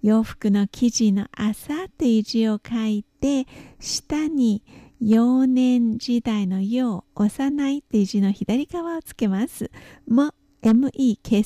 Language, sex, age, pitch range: Japanese, female, 50-69, 210-255 Hz